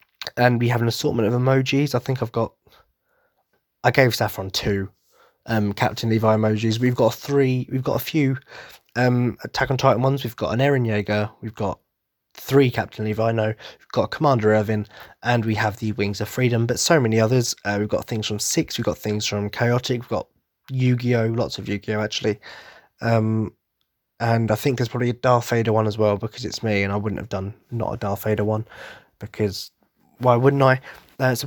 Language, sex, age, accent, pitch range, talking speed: English, male, 20-39, British, 105-125 Hz, 200 wpm